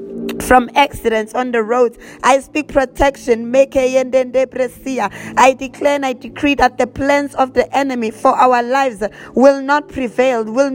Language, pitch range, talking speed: English, 240-275 Hz, 145 wpm